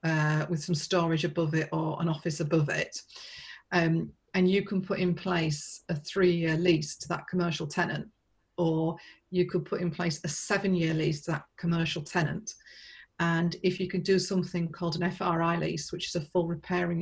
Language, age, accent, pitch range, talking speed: Swedish, 40-59, British, 170-190 Hz, 185 wpm